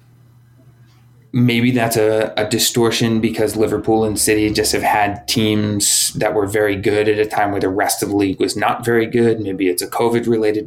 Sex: male